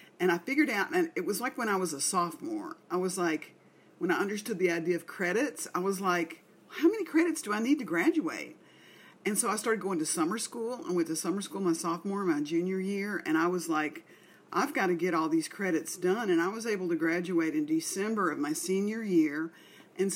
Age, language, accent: 50-69, English, American